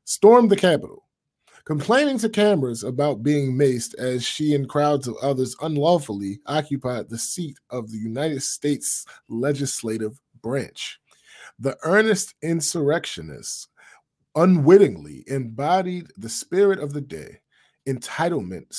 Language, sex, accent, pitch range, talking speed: English, male, American, 135-205 Hz, 115 wpm